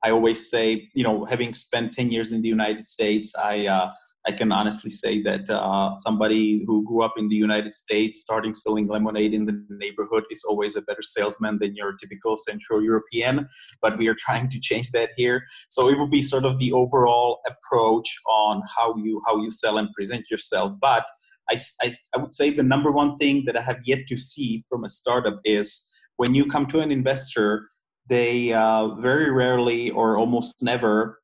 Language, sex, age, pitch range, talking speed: English, male, 30-49, 110-125 Hz, 200 wpm